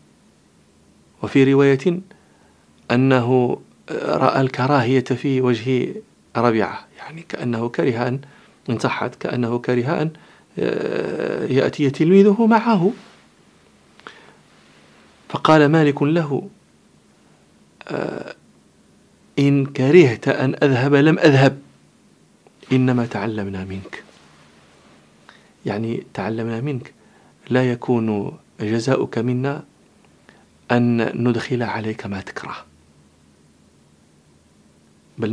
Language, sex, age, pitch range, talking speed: English, male, 40-59, 95-140 Hz, 75 wpm